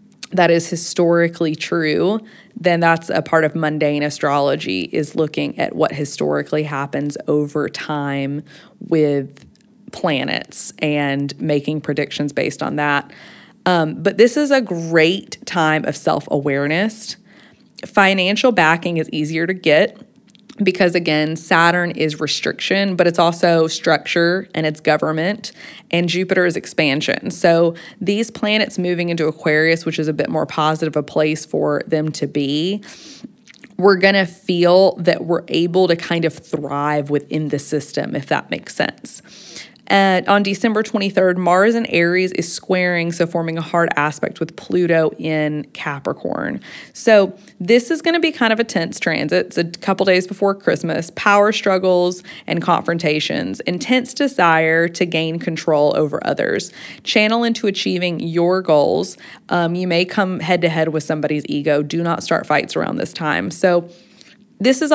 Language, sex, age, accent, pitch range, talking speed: English, female, 20-39, American, 155-195 Hz, 150 wpm